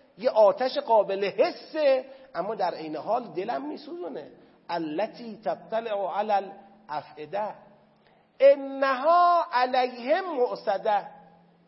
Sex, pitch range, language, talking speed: male, 210-275 Hz, Persian, 85 wpm